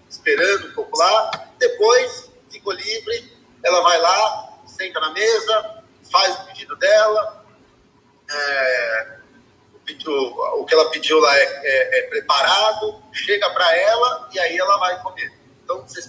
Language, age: Portuguese, 30-49